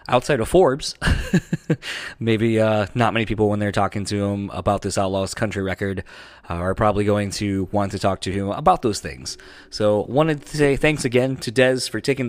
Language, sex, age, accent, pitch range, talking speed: English, male, 20-39, American, 100-120 Hz, 200 wpm